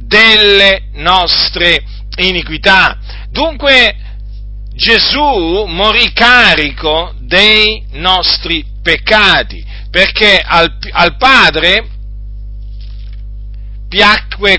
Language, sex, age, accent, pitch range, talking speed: Italian, male, 50-69, native, 155-215 Hz, 60 wpm